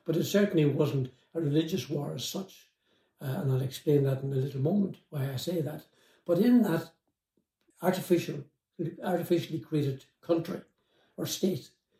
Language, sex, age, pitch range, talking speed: English, male, 60-79, 140-175 Hz, 155 wpm